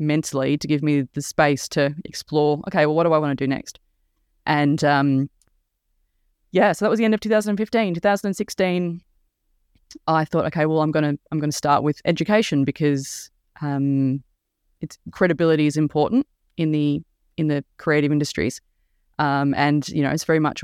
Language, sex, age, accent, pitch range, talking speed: English, female, 20-39, Australian, 145-175 Hz, 170 wpm